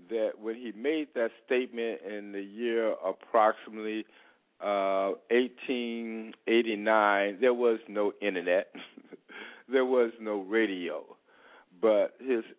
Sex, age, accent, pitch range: male, 50-69, American, 110-155 Hz